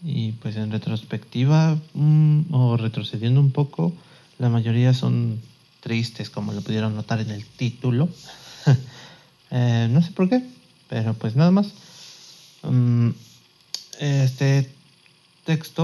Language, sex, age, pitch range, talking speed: Spanish, male, 30-49, 115-160 Hz, 120 wpm